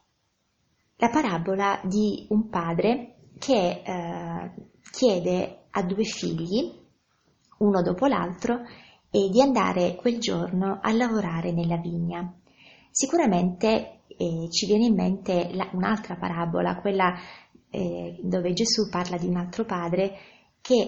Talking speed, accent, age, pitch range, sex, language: 120 wpm, native, 20-39, 175-205 Hz, female, Italian